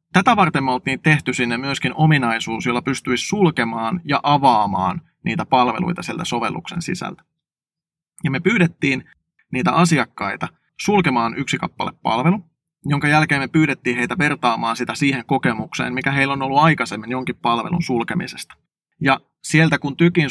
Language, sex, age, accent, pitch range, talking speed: Finnish, male, 20-39, native, 125-160 Hz, 140 wpm